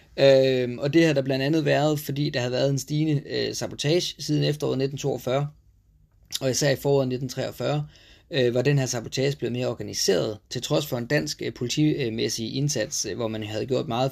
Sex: male